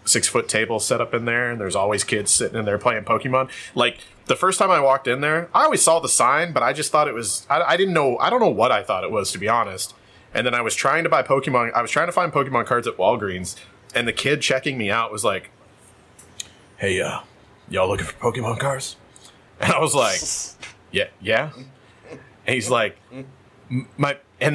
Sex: male